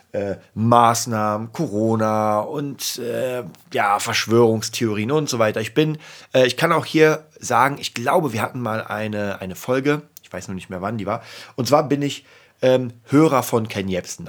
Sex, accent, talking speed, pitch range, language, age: male, German, 175 wpm, 105-125 Hz, German, 30-49